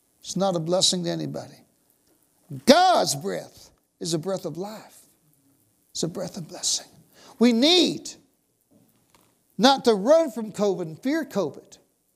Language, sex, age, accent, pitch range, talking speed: English, male, 60-79, American, 170-240 Hz, 140 wpm